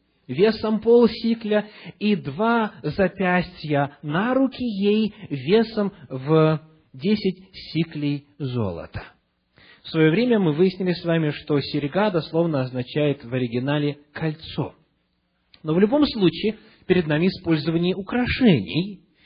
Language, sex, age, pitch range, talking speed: English, male, 30-49, 135-205 Hz, 110 wpm